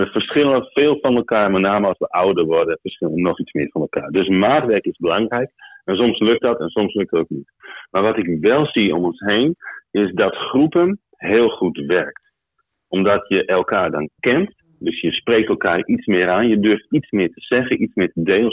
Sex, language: male, Dutch